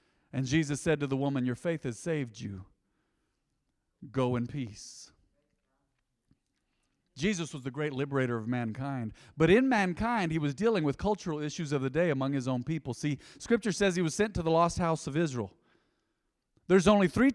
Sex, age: male, 40-59